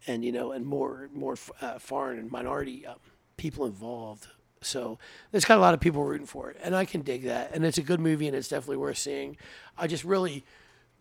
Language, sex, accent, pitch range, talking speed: English, male, American, 135-180 Hz, 235 wpm